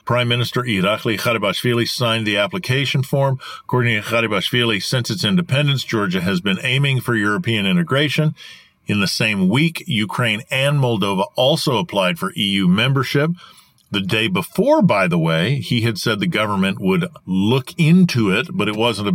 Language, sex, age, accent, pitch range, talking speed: English, male, 50-69, American, 105-160 Hz, 165 wpm